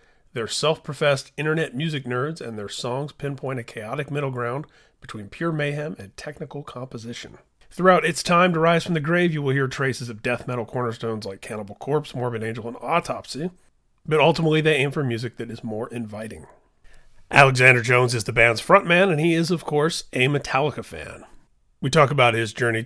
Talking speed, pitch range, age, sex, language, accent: 185 wpm, 115-150 Hz, 40-59, male, English, American